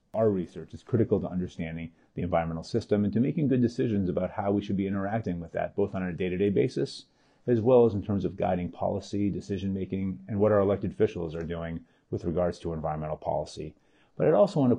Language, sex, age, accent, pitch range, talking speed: English, male, 30-49, American, 85-105 Hz, 210 wpm